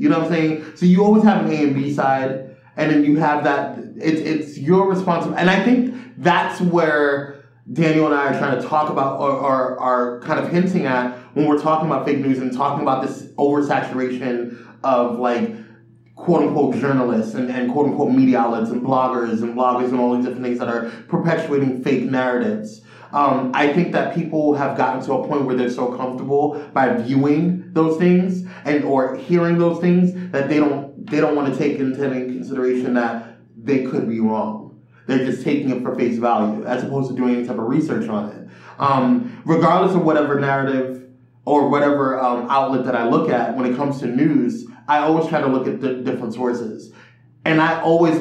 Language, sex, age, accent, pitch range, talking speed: English, male, 20-39, American, 125-160 Hz, 205 wpm